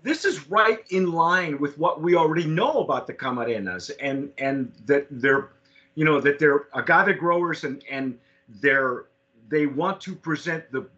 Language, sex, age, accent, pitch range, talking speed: English, male, 40-59, American, 140-170 Hz, 170 wpm